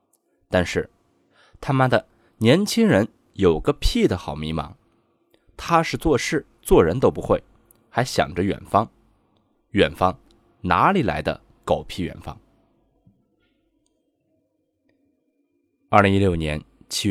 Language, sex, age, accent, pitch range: Chinese, male, 20-39, native, 85-145 Hz